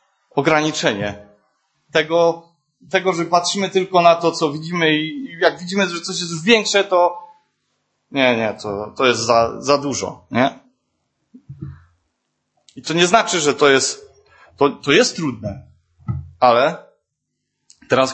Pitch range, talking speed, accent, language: 125-170 Hz, 135 wpm, native, Polish